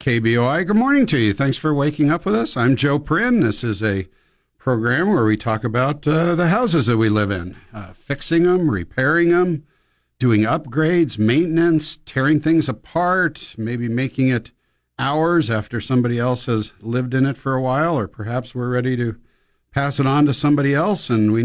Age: 60-79